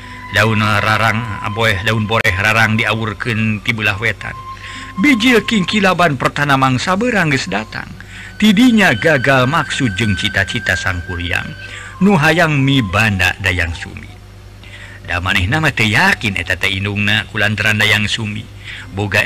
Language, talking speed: Indonesian, 115 wpm